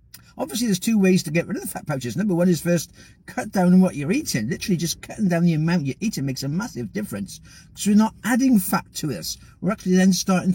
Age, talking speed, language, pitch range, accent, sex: 50-69, 250 wpm, English, 150-195 Hz, British, male